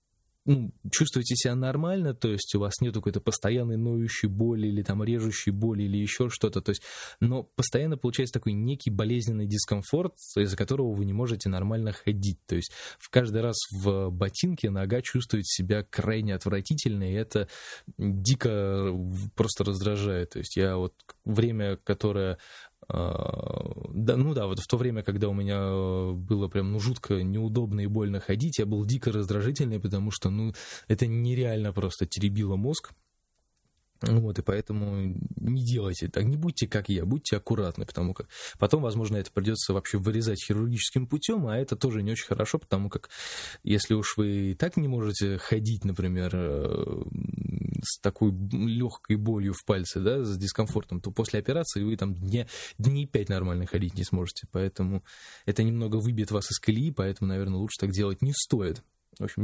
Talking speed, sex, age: 165 wpm, male, 20-39